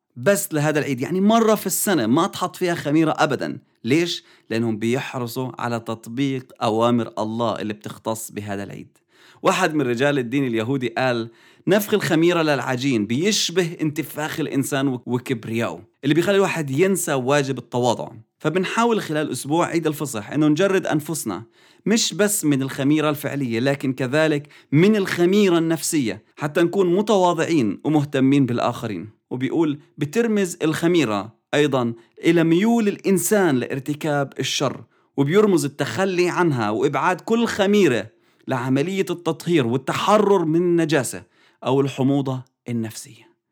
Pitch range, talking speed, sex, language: 130-175 Hz, 120 wpm, male, English